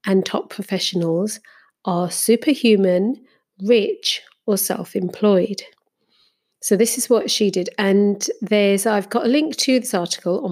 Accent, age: British, 40-59